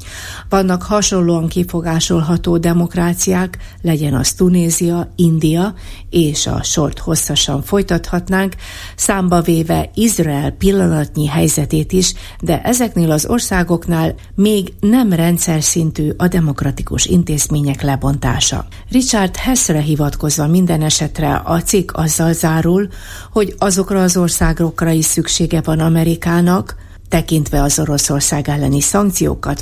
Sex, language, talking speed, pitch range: female, Hungarian, 105 wpm, 145-185 Hz